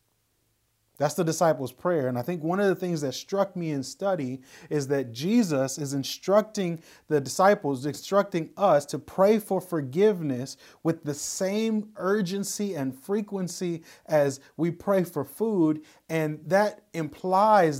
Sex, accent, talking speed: male, American, 145 wpm